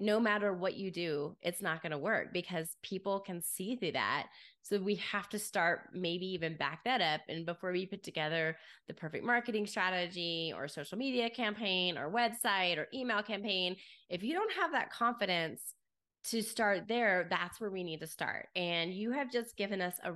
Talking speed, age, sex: 195 wpm, 20-39, female